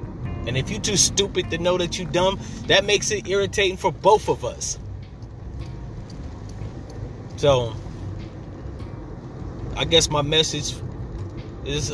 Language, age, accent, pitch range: English, 30-49, American, 120-180 Hz